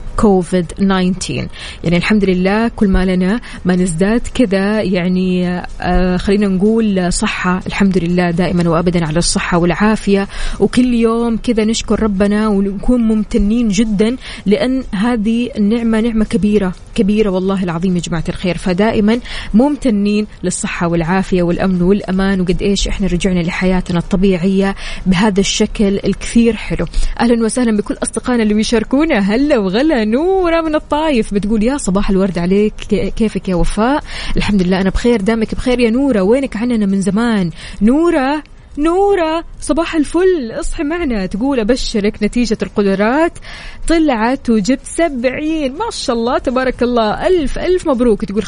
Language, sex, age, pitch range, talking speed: Arabic, female, 20-39, 190-235 Hz, 135 wpm